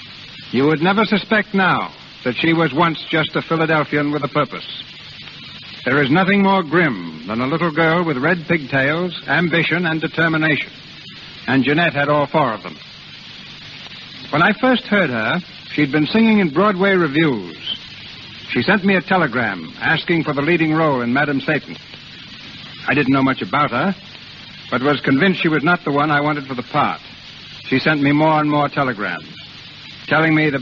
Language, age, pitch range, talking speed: English, 60-79, 140-175 Hz, 175 wpm